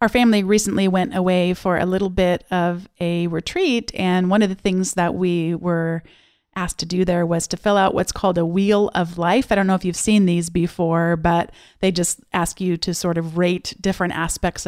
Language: English